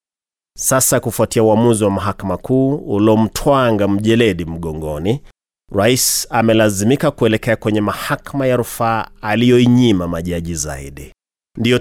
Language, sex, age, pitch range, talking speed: Swahili, male, 30-49, 105-130 Hz, 100 wpm